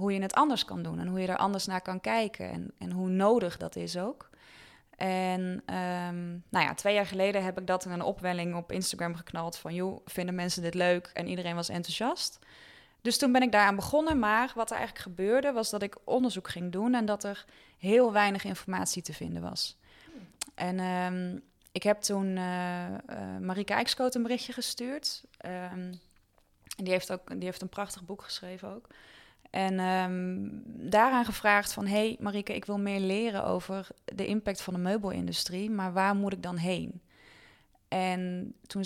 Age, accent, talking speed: 20-39, Dutch, 190 wpm